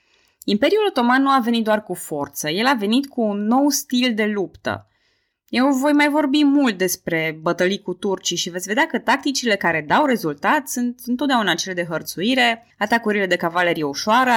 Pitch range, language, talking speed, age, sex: 185-265 Hz, Romanian, 180 wpm, 20-39, female